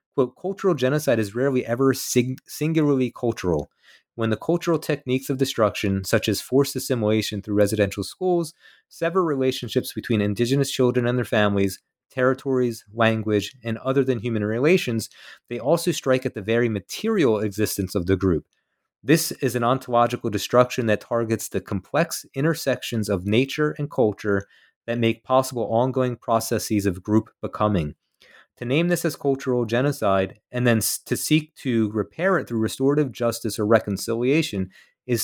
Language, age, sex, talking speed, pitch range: English, 30-49, male, 150 wpm, 105-130 Hz